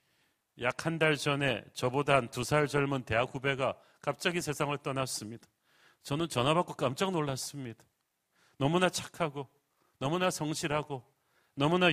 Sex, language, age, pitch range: male, Korean, 40-59, 130-165 Hz